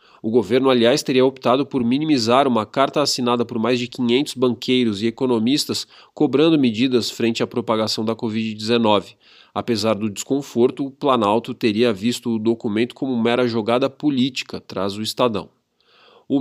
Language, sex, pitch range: Portuguese, male, 110-130 Hz